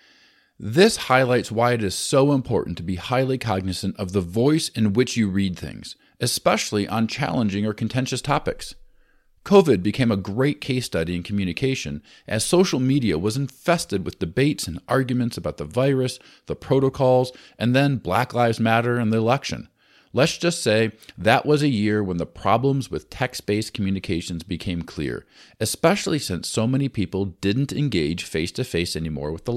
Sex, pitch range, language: male, 95-130 Hz, English